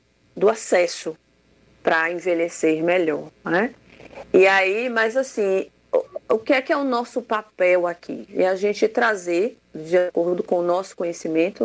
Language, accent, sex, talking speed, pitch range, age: Portuguese, Brazilian, female, 155 wpm, 175-225 Hz, 30-49